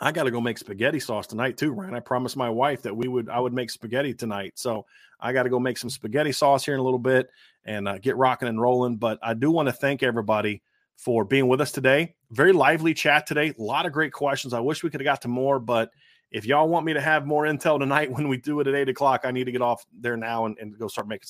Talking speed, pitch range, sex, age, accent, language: 280 wpm, 120-150 Hz, male, 30-49, American, English